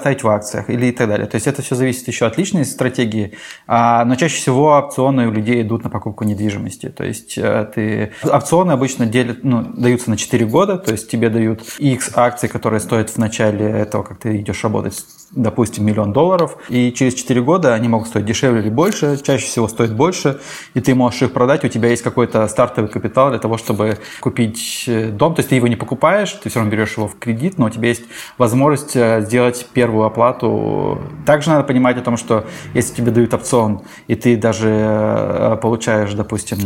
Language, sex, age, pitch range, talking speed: Russian, male, 20-39, 110-130 Hz, 200 wpm